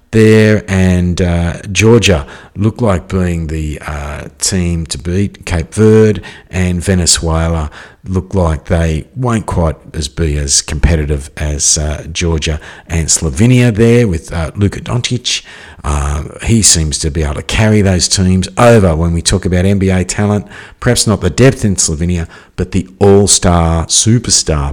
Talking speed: 150 wpm